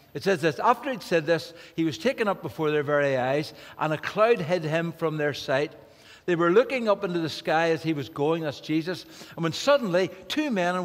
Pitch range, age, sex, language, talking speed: 150-195 Hz, 60-79, male, English, 230 wpm